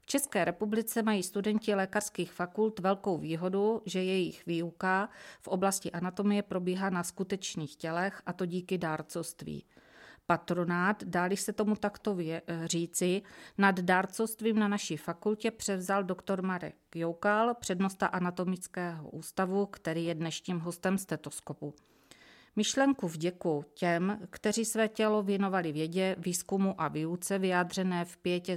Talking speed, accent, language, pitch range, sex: 130 wpm, native, Czech, 170-205 Hz, female